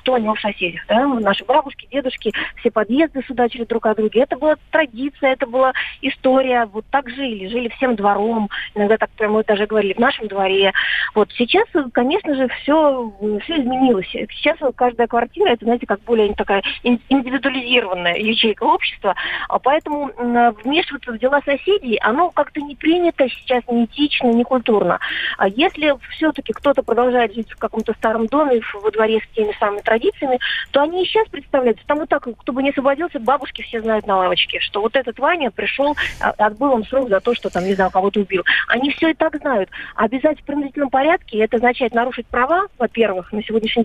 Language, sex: Russian, female